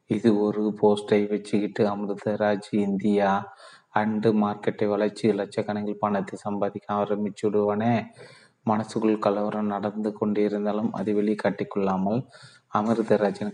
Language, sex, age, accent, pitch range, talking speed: Tamil, male, 30-49, native, 100-105 Hz, 95 wpm